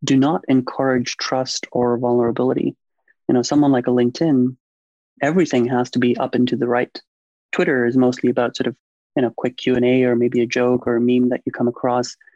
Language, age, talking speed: English, 30-49, 205 wpm